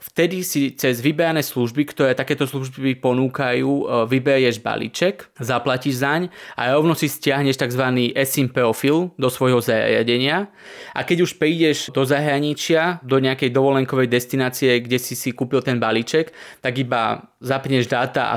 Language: Slovak